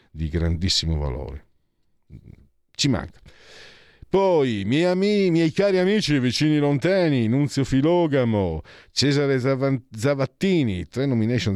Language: Italian